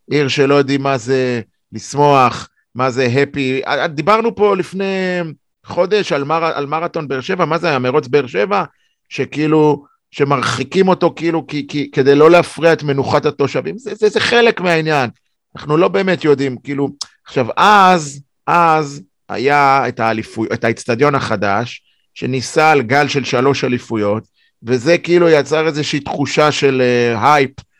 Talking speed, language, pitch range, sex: 140 wpm, Hebrew, 125-170 Hz, male